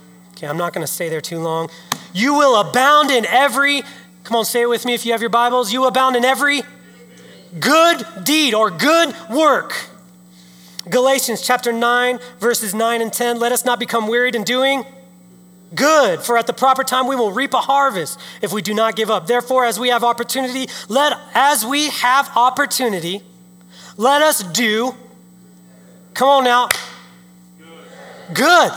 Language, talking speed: English, 170 wpm